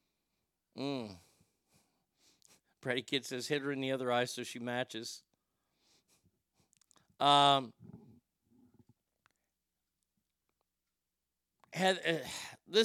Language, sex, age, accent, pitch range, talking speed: English, male, 50-69, American, 135-170 Hz, 80 wpm